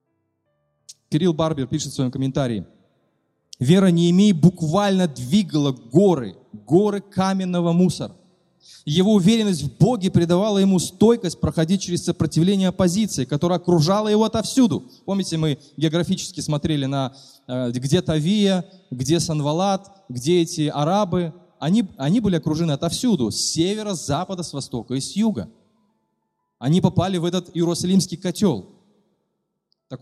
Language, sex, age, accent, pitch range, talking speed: Russian, male, 20-39, native, 155-195 Hz, 125 wpm